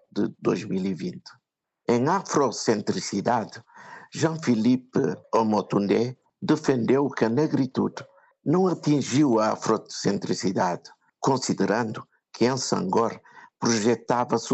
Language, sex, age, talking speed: Portuguese, male, 50-69, 80 wpm